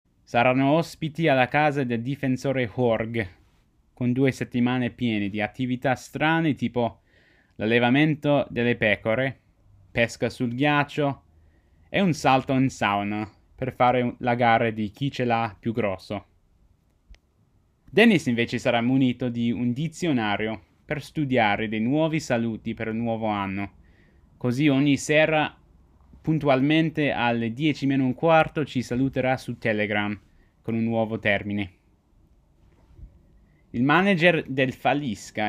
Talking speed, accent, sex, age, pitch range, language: 125 wpm, native, male, 20-39, 105-140 Hz, Italian